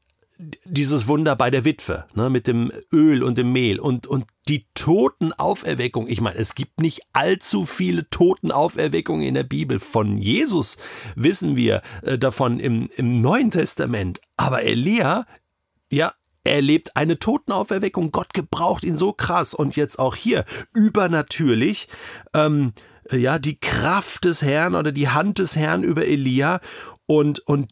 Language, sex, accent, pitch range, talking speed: German, male, German, 130-170 Hz, 145 wpm